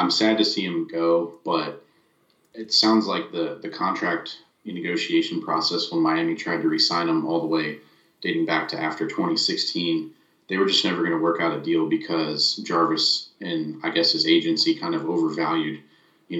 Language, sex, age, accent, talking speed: English, male, 30-49, American, 185 wpm